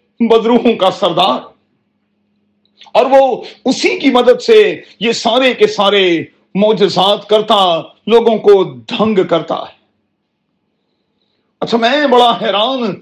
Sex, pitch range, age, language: male, 205-250 Hz, 40-59, Urdu